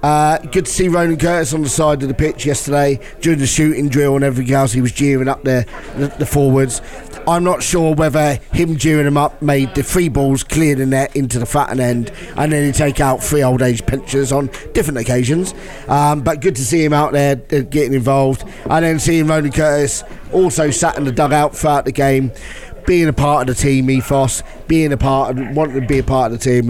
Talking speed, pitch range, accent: 225 wpm, 135-170 Hz, British